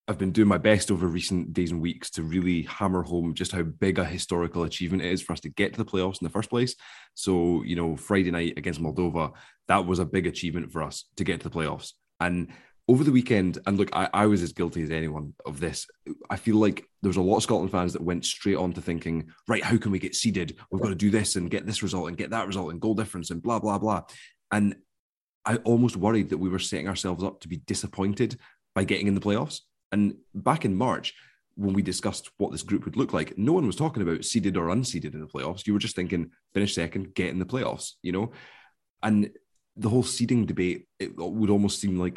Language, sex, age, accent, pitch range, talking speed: English, male, 20-39, British, 85-105 Hz, 245 wpm